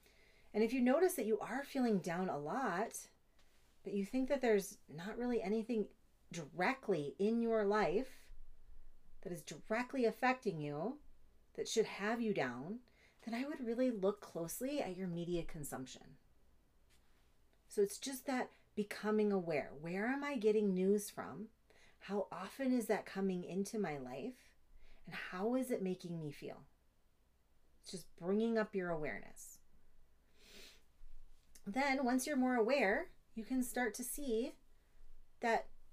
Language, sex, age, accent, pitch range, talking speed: English, female, 30-49, American, 170-240 Hz, 145 wpm